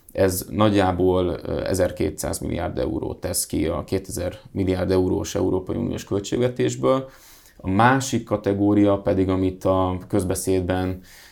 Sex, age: male, 20-39